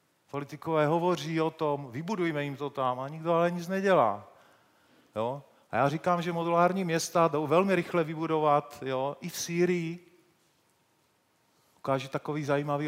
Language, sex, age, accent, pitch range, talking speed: Czech, male, 40-59, native, 140-165 Hz, 145 wpm